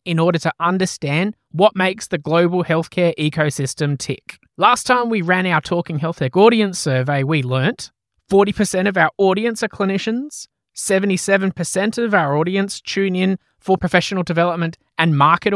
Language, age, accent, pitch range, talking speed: English, 20-39, Australian, 145-195 Hz, 155 wpm